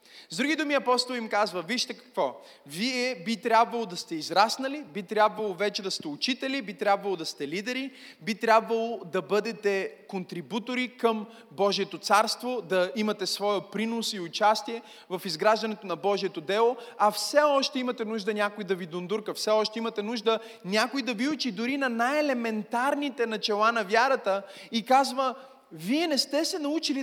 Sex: male